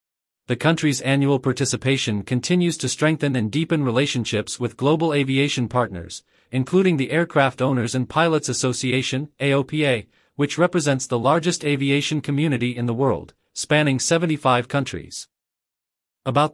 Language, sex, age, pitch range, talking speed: English, male, 40-59, 125-150 Hz, 125 wpm